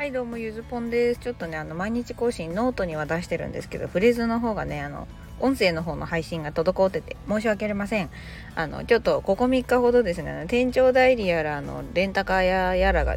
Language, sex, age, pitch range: Japanese, female, 20-39, 160-245 Hz